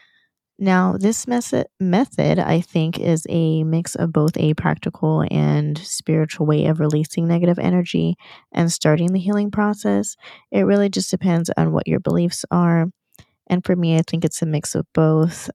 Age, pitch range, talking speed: 20-39, 150-175 Hz, 165 wpm